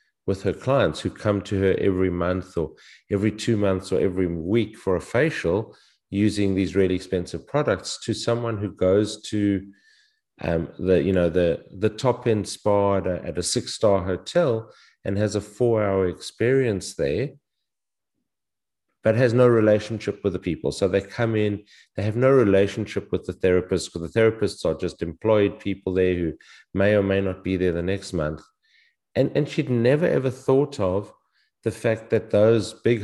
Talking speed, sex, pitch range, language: 175 wpm, male, 95-115 Hz, English